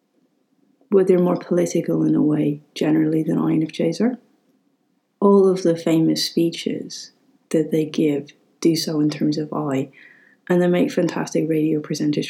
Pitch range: 150-215 Hz